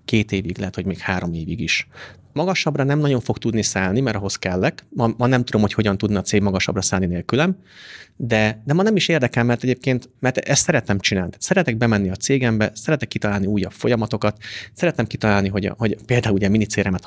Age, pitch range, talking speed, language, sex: 30-49, 100-135 Hz, 195 wpm, Hungarian, male